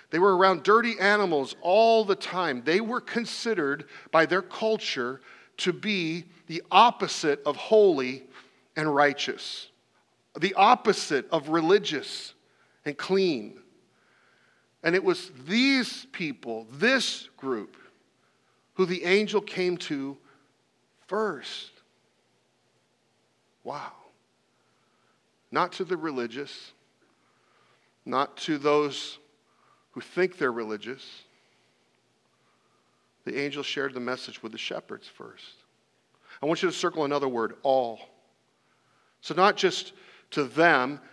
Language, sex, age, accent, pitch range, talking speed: English, male, 40-59, American, 150-210 Hz, 110 wpm